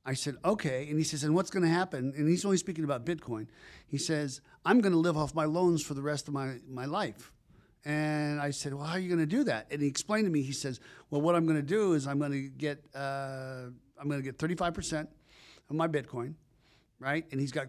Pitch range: 145-175 Hz